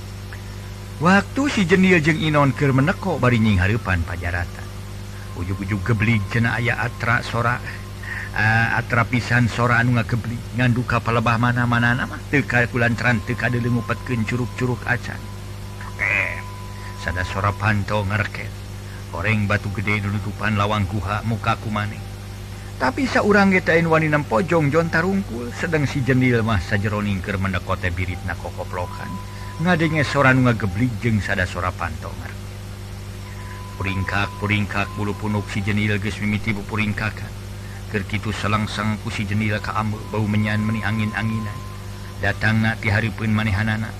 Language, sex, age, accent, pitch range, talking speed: Indonesian, male, 50-69, native, 100-120 Hz, 130 wpm